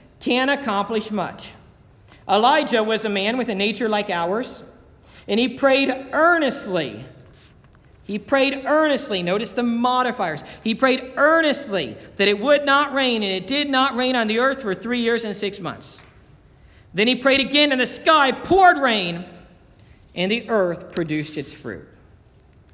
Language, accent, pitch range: English, American, 195-255 Hz